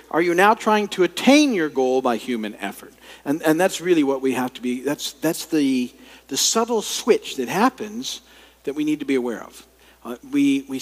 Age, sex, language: 50-69, male, English